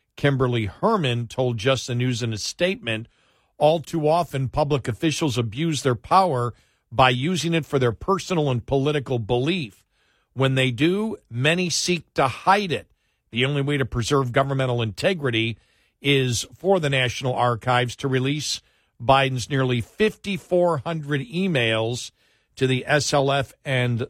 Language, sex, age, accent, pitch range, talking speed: English, male, 50-69, American, 120-150 Hz, 140 wpm